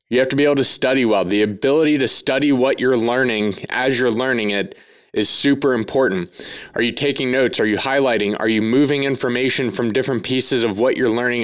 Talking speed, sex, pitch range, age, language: 210 wpm, male, 115-140 Hz, 20-39, English